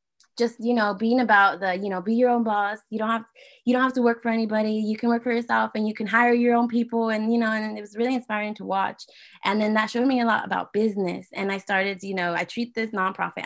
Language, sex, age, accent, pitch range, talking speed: English, female, 20-39, American, 180-215 Hz, 275 wpm